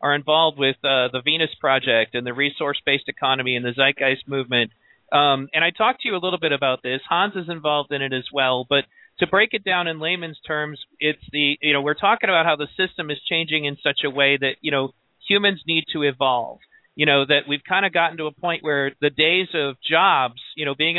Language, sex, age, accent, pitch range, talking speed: English, male, 40-59, American, 135-160 Hz, 235 wpm